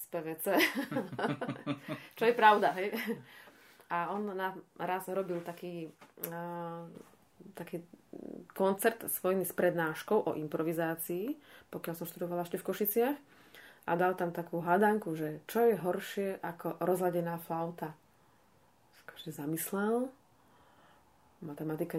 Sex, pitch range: female, 165-205 Hz